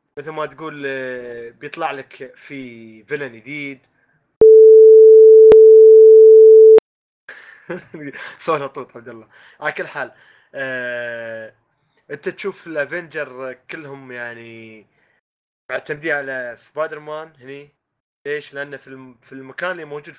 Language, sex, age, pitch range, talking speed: Arabic, male, 20-39, 130-175 Hz, 100 wpm